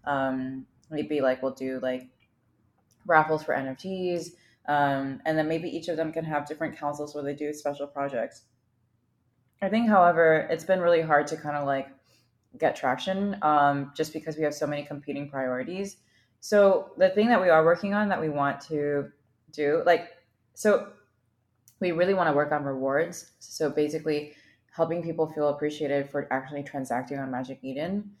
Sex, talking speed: female, 170 wpm